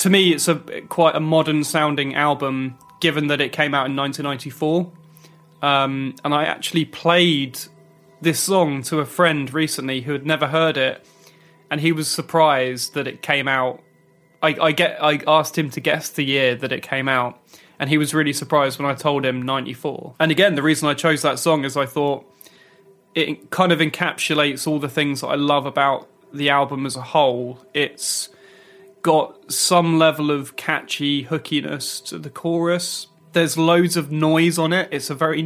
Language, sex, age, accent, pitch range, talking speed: French, male, 20-39, British, 140-160 Hz, 185 wpm